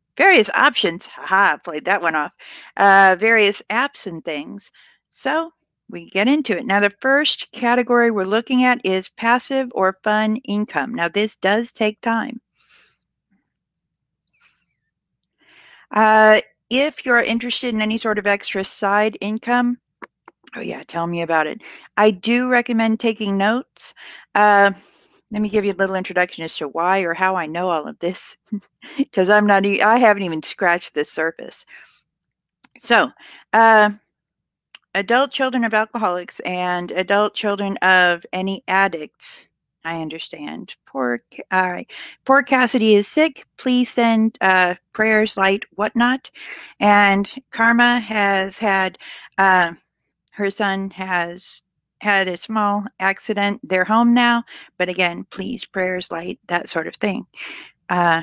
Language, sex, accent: English, female, American